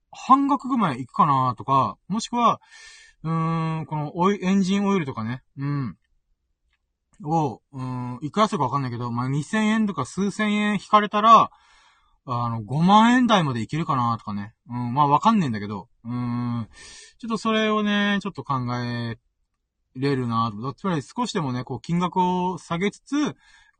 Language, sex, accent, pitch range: Japanese, male, native, 125-195 Hz